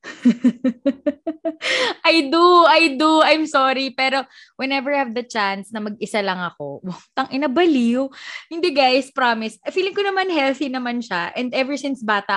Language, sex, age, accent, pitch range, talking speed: English, female, 20-39, Filipino, 205-305 Hz, 145 wpm